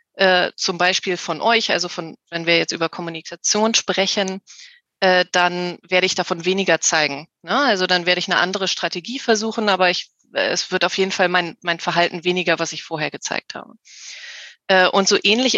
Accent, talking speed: German, 175 wpm